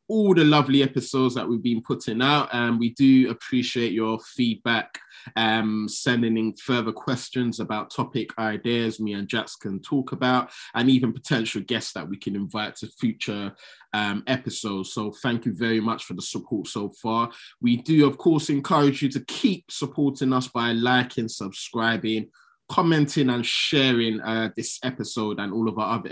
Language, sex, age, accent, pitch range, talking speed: English, male, 20-39, British, 110-135 Hz, 175 wpm